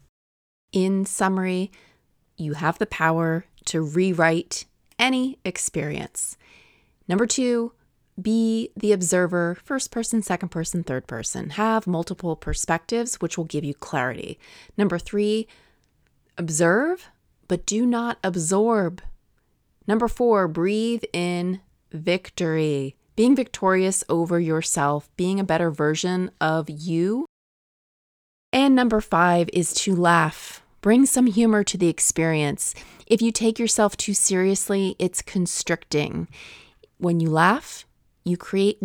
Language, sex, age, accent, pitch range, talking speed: English, female, 30-49, American, 165-220 Hz, 115 wpm